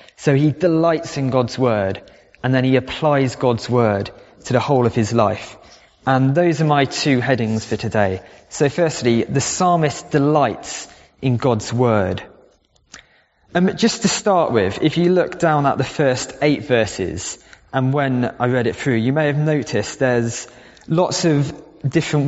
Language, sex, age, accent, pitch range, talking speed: English, male, 20-39, British, 120-150 Hz, 165 wpm